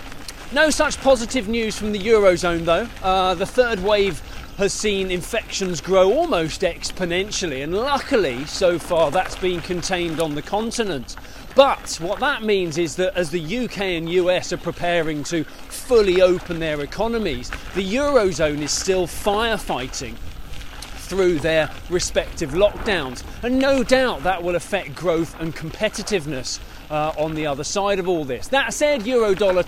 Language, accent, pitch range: English, British, 165-225 Hz